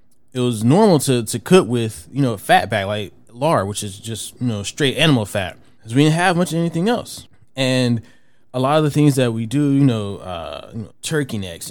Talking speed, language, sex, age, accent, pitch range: 230 wpm, English, male, 20-39, American, 105-125 Hz